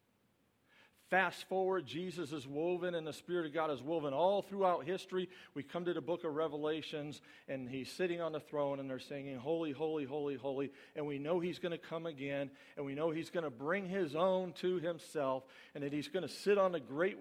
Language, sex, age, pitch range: English, male, 50-69, 130-175 Hz